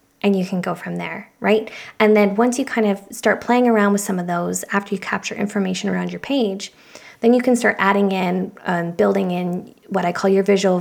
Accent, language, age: American, English, 20-39